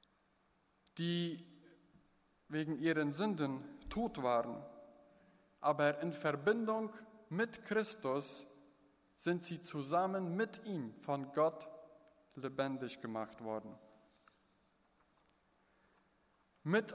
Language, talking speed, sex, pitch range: German, 80 wpm, male, 145-180 Hz